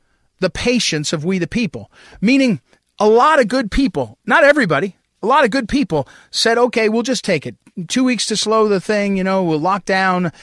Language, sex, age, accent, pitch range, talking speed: English, male, 40-59, American, 160-240 Hz, 205 wpm